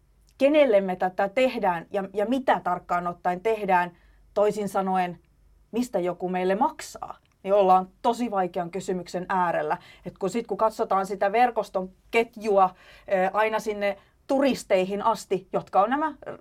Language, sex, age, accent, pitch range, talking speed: Finnish, female, 30-49, native, 185-225 Hz, 130 wpm